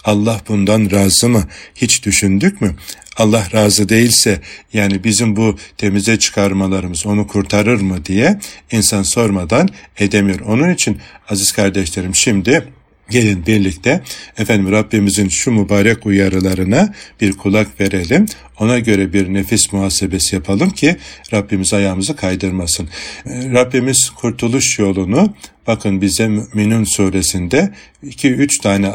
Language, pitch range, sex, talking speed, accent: Turkish, 95-110 Hz, male, 120 wpm, native